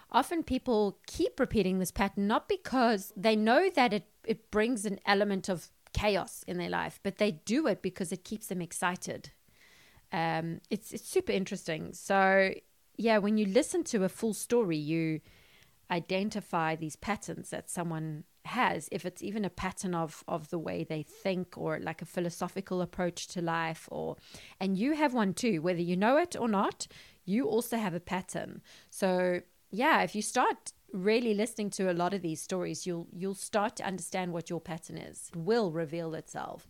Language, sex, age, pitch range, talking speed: English, female, 30-49, 170-215 Hz, 185 wpm